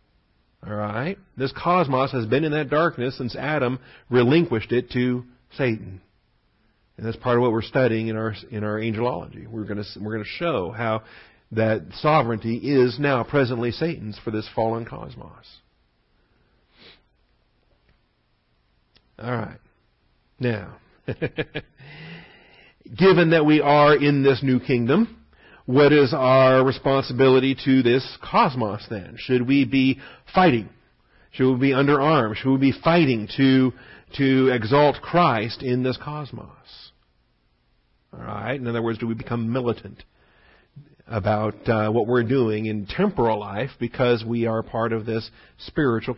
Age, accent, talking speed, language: 50-69, American, 140 wpm, English